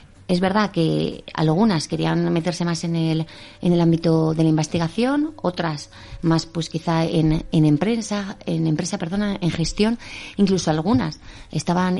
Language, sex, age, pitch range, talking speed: Spanish, female, 30-49, 155-195 Hz, 150 wpm